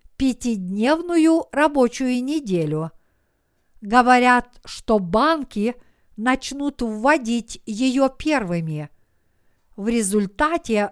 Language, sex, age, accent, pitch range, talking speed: Russian, female, 50-69, native, 180-280 Hz, 65 wpm